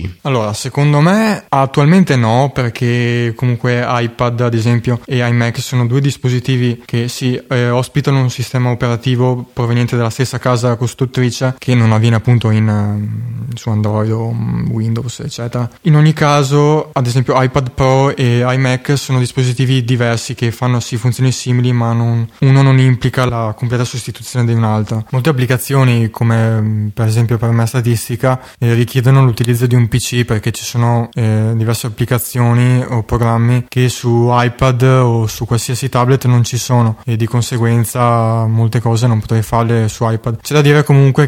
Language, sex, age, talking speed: Italian, male, 20-39, 155 wpm